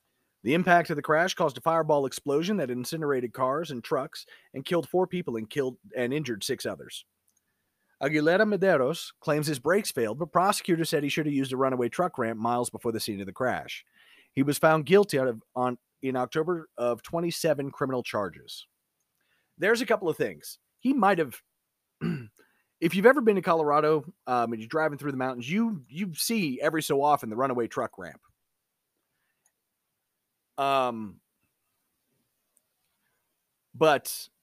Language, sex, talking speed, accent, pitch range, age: English, male, 165 wpm, American, 130-180 Hz, 30-49